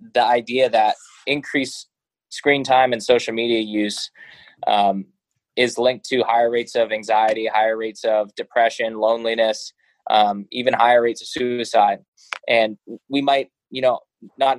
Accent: American